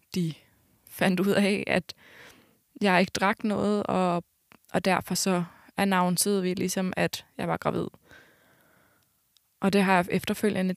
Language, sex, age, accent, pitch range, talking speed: Danish, female, 20-39, native, 180-205 Hz, 140 wpm